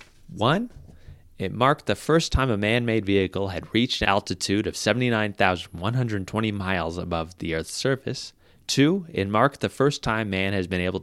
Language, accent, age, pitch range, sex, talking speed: English, American, 30-49, 90-115 Hz, male, 165 wpm